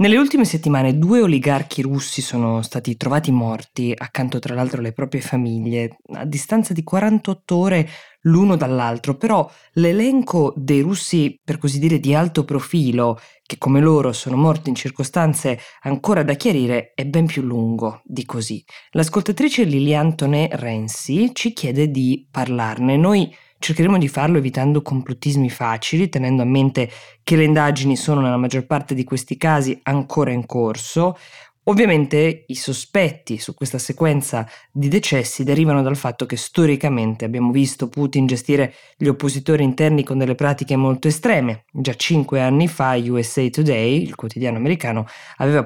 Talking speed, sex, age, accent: 150 wpm, female, 20-39, native